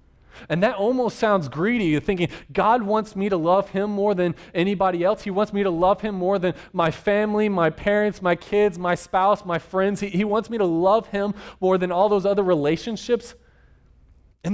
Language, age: English, 20-39